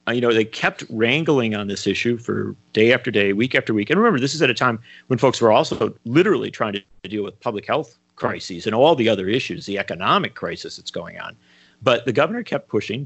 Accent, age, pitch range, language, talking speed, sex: American, 40-59, 95-125 Hz, English, 230 wpm, male